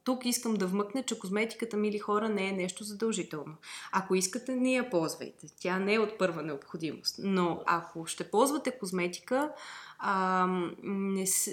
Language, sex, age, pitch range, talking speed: Bulgarian, female, 20-39, 185-225 Hz, 155 wpm